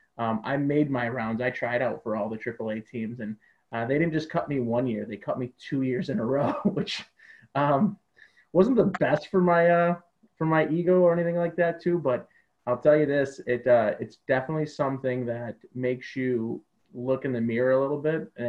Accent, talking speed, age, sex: American, 215 wpm, 20-39, male